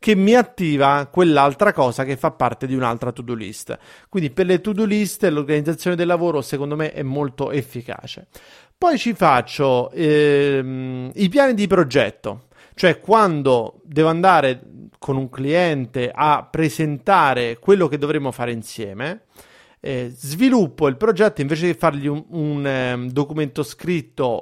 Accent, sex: native, male